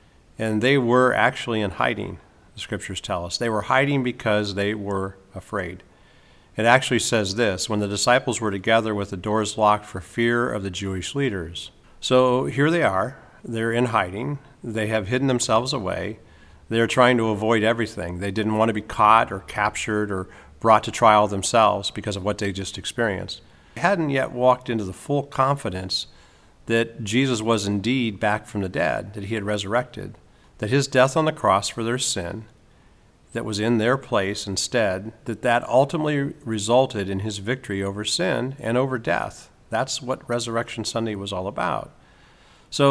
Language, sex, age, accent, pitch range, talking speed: English, male, 50-69, American, 100-125 Hz, 180 wpm